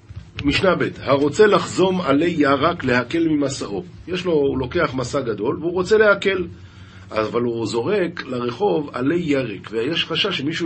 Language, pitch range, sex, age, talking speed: Hebrew, 110-175 Hz, male, 50-69, 145 wpm